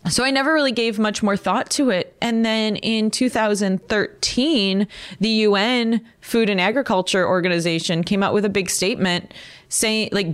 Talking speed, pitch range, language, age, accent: 165 wpm, 170-215 Hz, English, 20-39, American